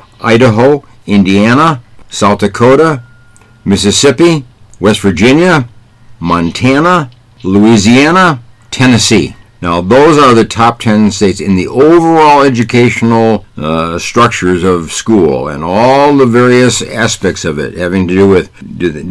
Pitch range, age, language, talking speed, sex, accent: 95-125 Hz, 60-79, English, 115 wpm, male, American